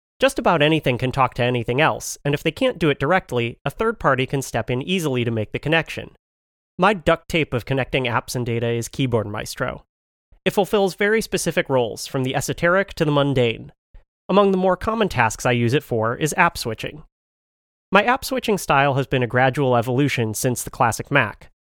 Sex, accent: male, American